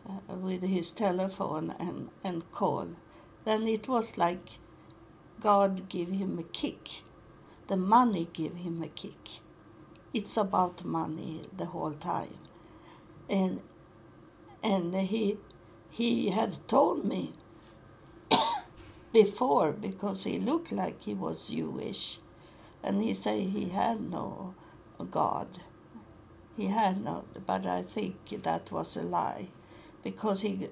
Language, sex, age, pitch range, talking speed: English, female, 60-79, 175-220 Hz, 115 wpm